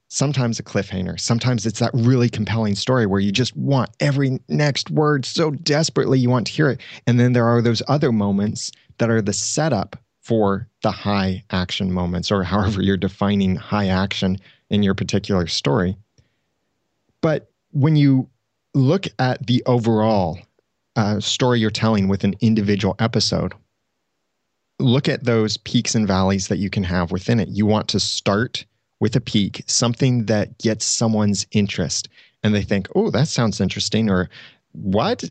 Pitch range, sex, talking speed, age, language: 100-125 Hz, male, 165 wpm, 30-49, English